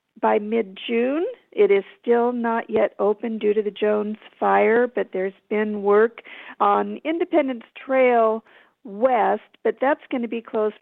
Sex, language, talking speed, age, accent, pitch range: female, English, 150 wpm, 50-69, American, 205-240 Hz